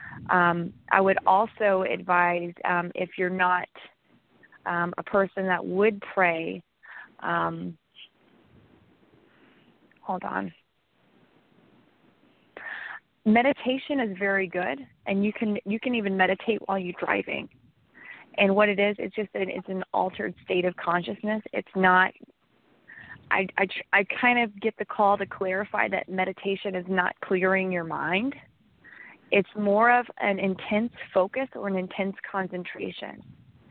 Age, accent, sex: 20-39, American, female